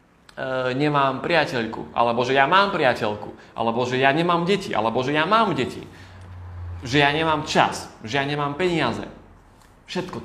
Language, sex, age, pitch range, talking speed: Slovak, male, 20-39, 115-150 Hz, 150 wpm